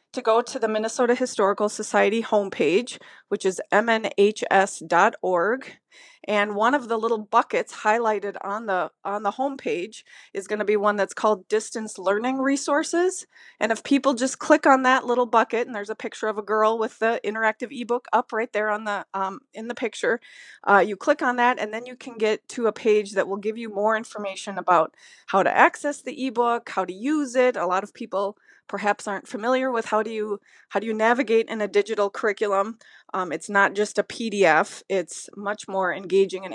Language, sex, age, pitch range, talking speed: English, female, 30-49, 205-255 Hz, 195 wpm